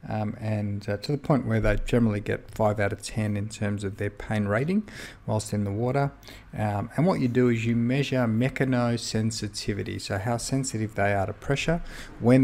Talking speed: 200 wpm